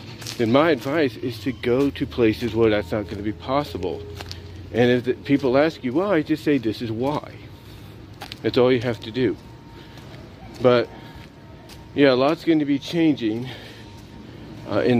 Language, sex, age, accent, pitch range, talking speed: English, male, 50-69, American, 100-125 Hz, 160 wpm